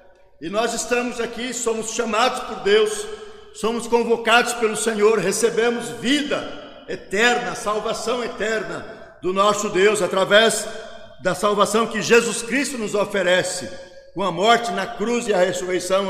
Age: 60-79